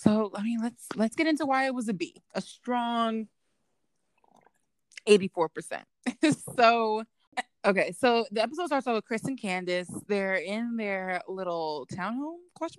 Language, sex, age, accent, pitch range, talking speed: English, female, 20-39, American, 185-230 Hz, 150 wpm